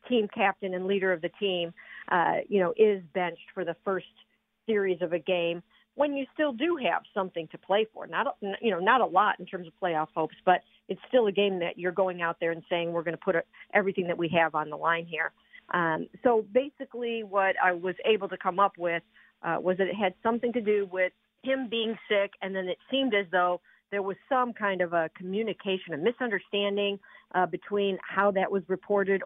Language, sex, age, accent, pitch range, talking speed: English, female, 50-69, American, 180-215 Hz, 220 wpm